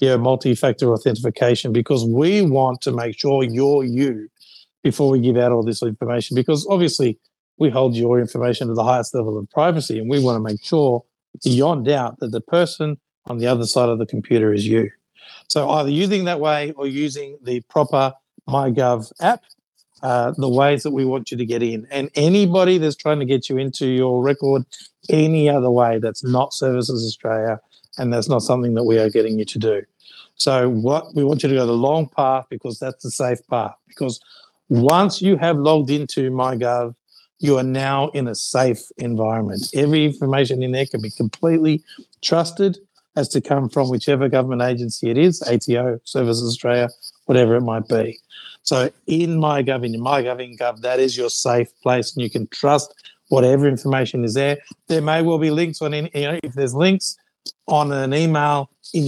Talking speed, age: 190 wpm, 50-69